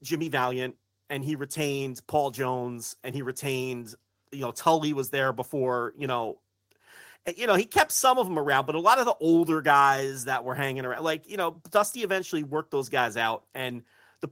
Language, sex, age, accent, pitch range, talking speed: English, male, 30-49, American, 120-160 Hz, 200 wpm